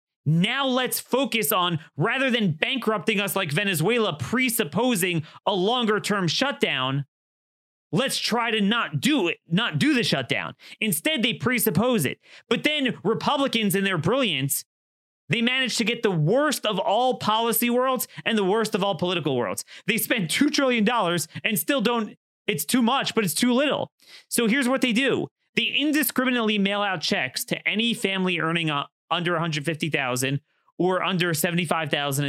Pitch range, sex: 145-220 Hz, male